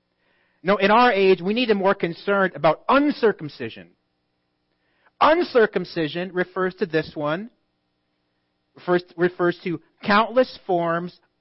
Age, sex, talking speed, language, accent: 40-59, male, 115 wpm, English, American